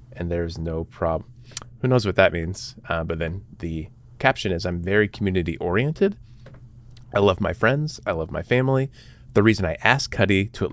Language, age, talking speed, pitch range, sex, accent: English, 30-49, 190 wpm, 85-120 Hz, male, American